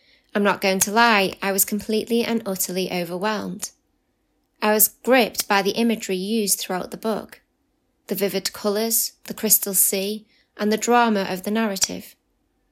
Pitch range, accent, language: 195-225 Hz, British, English